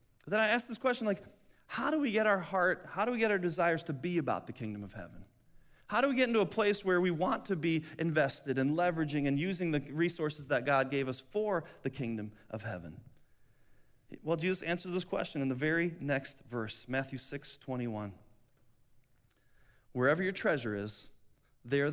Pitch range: 125-205 Hz